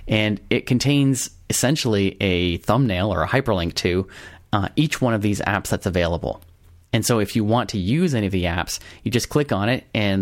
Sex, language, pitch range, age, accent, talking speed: male, English, 95-120 Hz, 30-49, American, 205 wpm